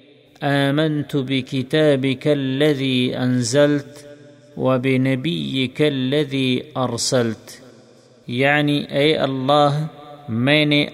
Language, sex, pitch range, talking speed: Urdu, male, 130-145 Hz, 65 wpm